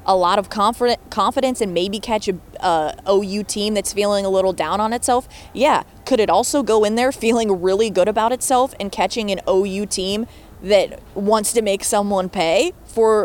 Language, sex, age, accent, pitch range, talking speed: English, female, 20-39, American, 180-215 Hz, 195 wpm